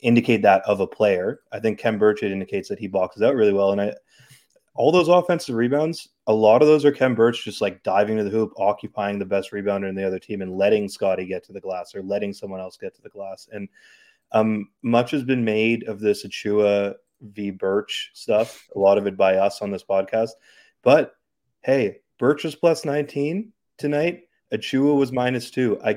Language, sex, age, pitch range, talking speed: English, male, 20-39, 105-130 Hz, 210 wpm